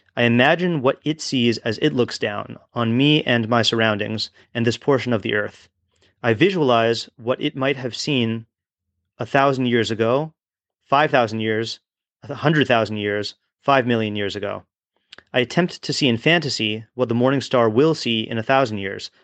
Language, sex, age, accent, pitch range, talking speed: English, male, 30-49, American, 110-135 Hz, 180 wpm